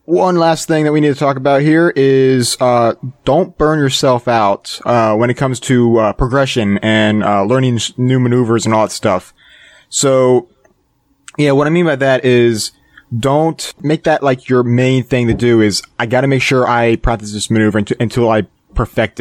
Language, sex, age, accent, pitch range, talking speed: English, male, 20-39, American, 115-145 Hz, 190 wpm